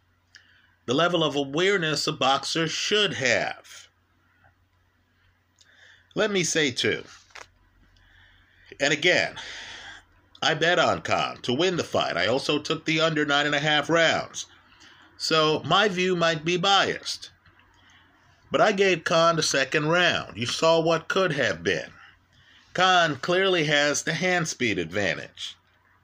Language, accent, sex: English, American, male